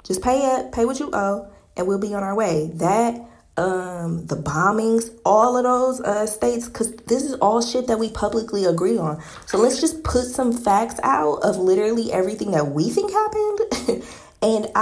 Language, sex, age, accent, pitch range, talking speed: English, female, 20-39, American, 185-235 Hz, 190 wpm